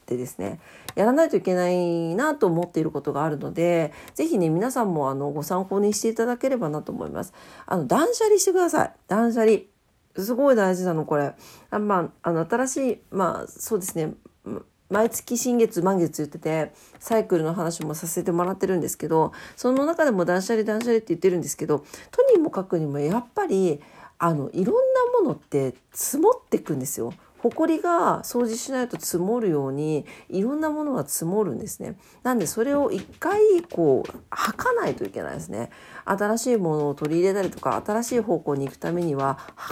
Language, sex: Japanese, female